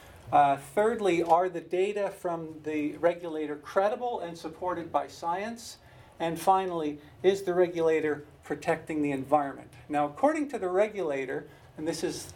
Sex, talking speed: male, 140 wpm